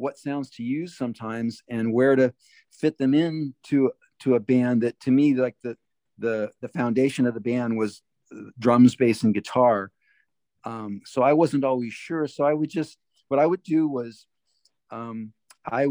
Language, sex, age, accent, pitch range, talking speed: English, male, 50-69, American, 110-135 Hz, 180 wpm